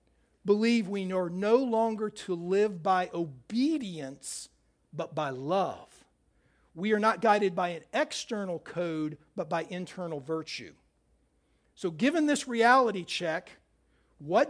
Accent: American